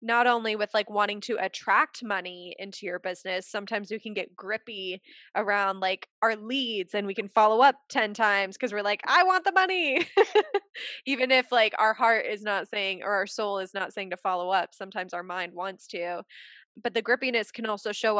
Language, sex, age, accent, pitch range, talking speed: English, female, 20-39, American, 195-235 Hz, 205 wpm